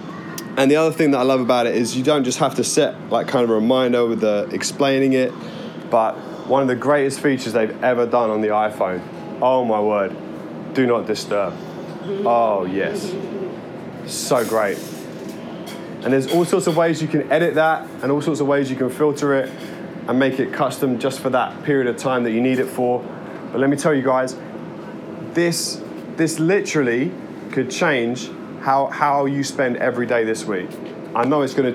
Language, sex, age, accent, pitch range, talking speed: English, male, 20-39, British, 125-150 Hz, 195 wpm